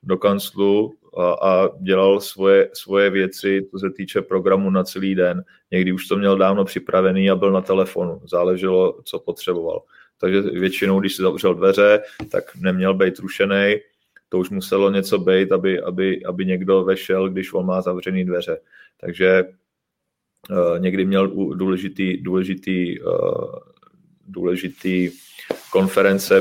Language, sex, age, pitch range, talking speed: Czech, male, 30-49, 95-105 Hz, 140 wpm